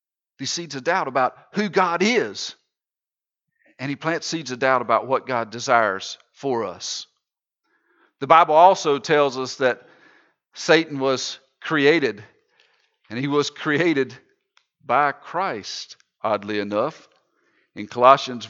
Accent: American